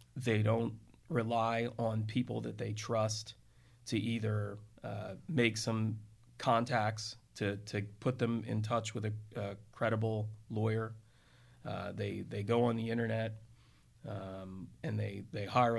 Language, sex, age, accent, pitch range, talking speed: English, male, 30-49, American, 105-120 Hz, 140 wpm